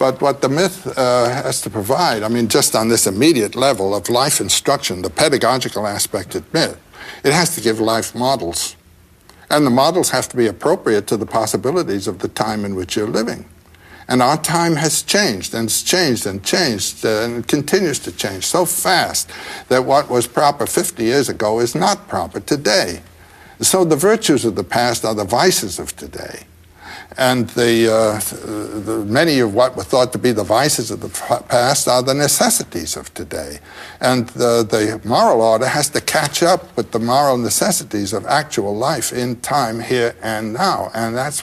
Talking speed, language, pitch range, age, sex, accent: 185 wpm, English, 110-135 Hz, 60-79, male, American